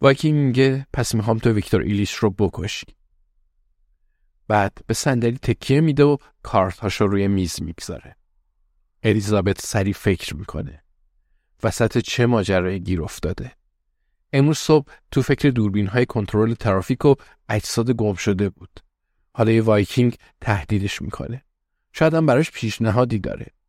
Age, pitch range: 50-69, 95-125 Hz